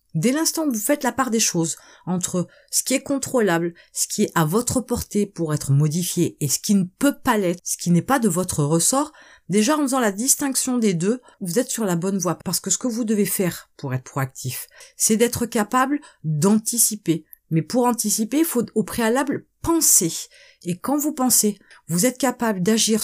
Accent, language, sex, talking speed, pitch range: French, French, female, 210 wpm, 175-255 Hz